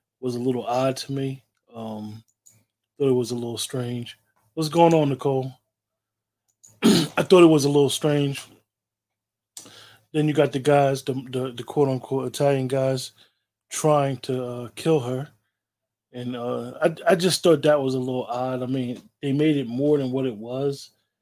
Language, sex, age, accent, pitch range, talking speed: English, male, 20-39, American, 115-140 Hz, 175 wpm